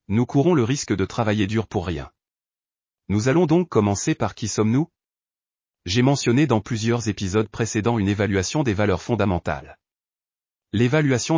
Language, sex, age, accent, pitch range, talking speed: French, male, 30-49, French, 100-125 Hz, 150 wpm